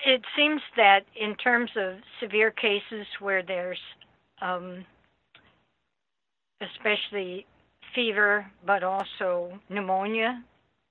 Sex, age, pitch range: female, 60-79, 180-210 Hz